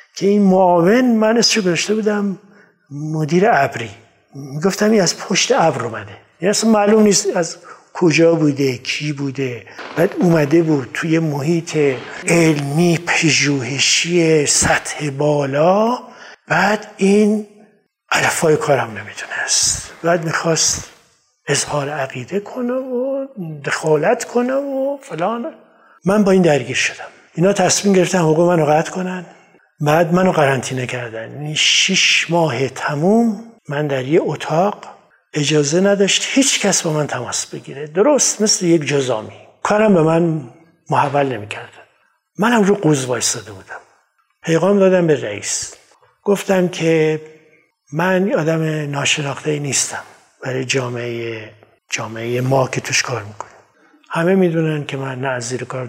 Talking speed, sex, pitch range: 130 wpm, male, 135-195 Hz